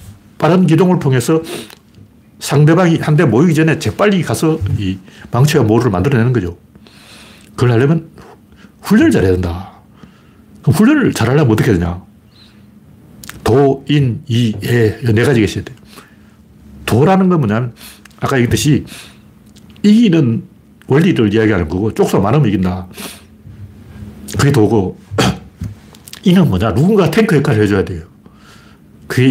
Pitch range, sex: 105-170 Hz, male